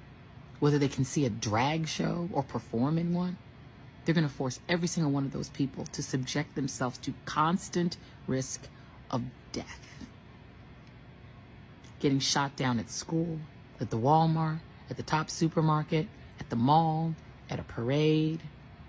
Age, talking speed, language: 40-59, 145 wpm, English